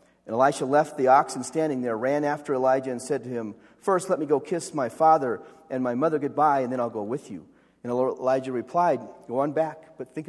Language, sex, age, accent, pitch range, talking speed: English, male, 40-59, American, 125-160 Hz, 225 wpm